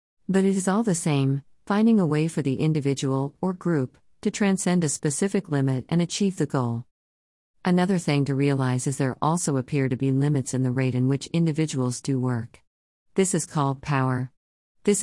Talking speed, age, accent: 190 wpm, 50-69, American